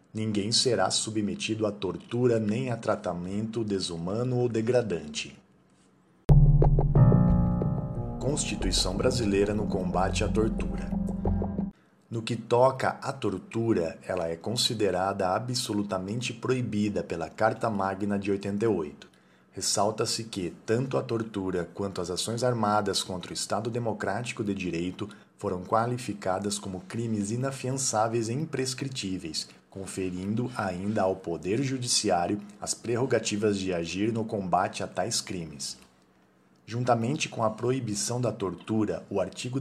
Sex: male